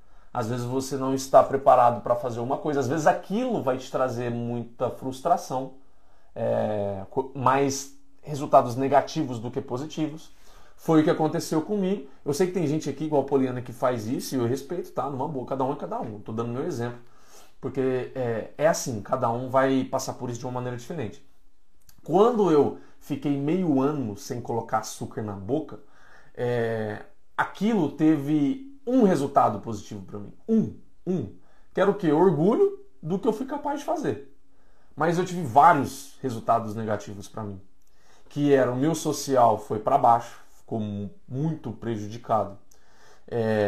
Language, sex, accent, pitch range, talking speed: Portuguese, male, Brazilian, 120-155 Hz, 170 wpm